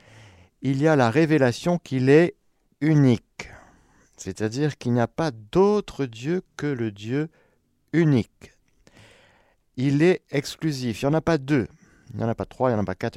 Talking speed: 180 wpm